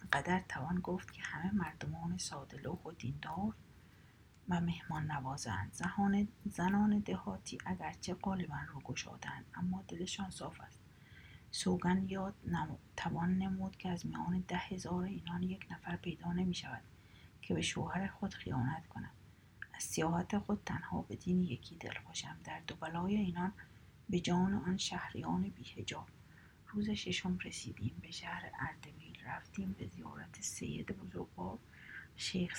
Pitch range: 175-200 Hz